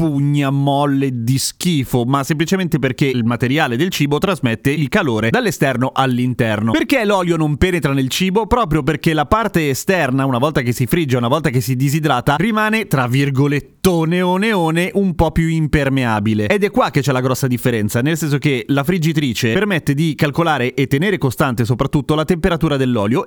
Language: Italian